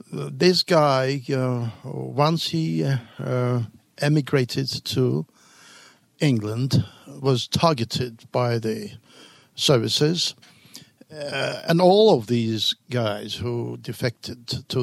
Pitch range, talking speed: 120-150 Hz, 95 wpm